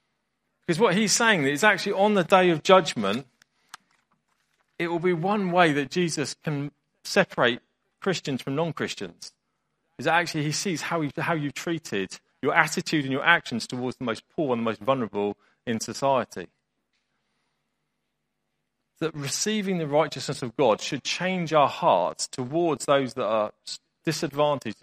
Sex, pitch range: male, 125-170 Hz